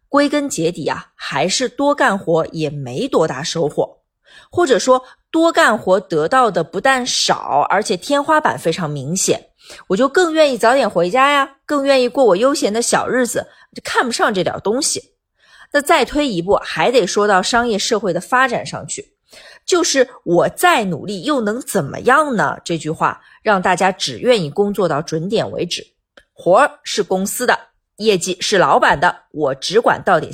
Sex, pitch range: female, 175-270 Hz